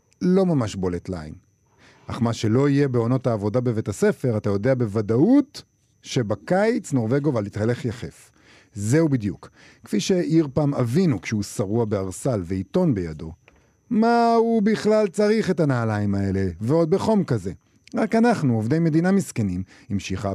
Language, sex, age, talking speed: Hebrew, male, 50-69, 135 wpm